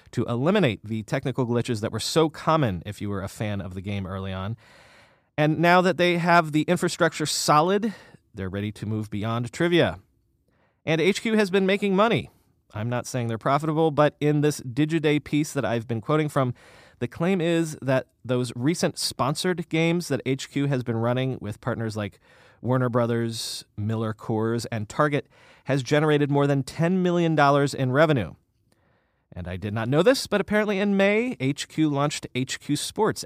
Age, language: 30-49, English